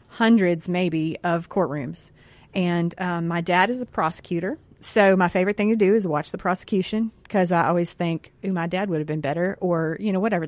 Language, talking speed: English, 200 wpm